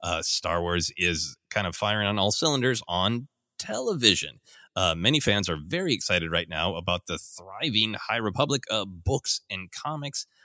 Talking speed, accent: 170 wpm, American